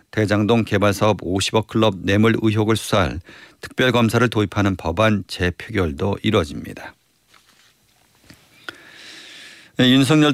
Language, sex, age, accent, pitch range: Korean, male, 50-69, native, 95-120 Hz